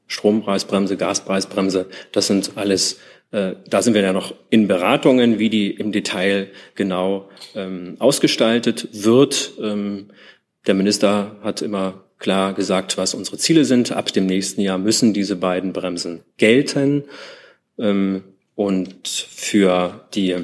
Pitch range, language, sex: 95-105 Hz, German, male